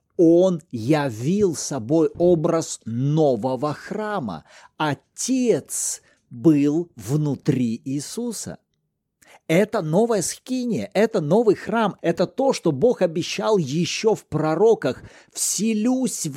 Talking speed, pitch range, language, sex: 90 wpm, 140-200 Hz, Russian, male